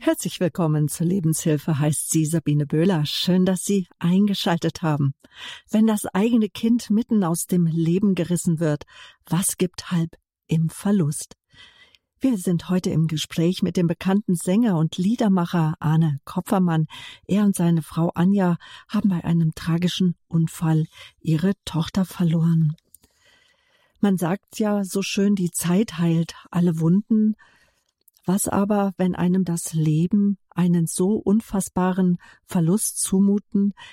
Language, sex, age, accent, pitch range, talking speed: German, female, 50-69, German, 165-195 Hz, 135 wpm